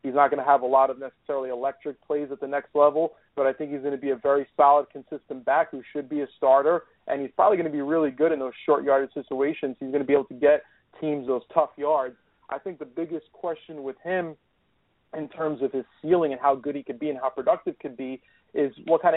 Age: 30-49